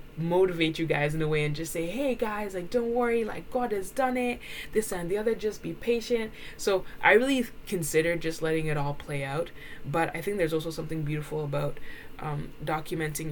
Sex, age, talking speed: female, 20-39, 205 wpm